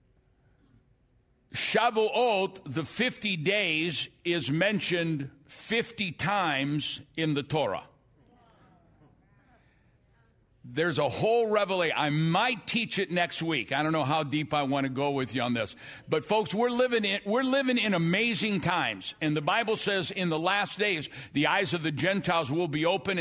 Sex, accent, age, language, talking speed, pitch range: male, American, 60-79, English, 155 wpm, 150-215 Hz